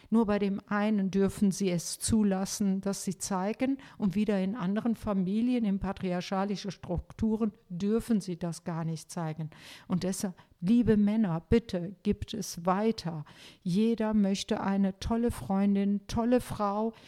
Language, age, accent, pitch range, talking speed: German, 50-69, German, 175-215 Hz, 140 wpm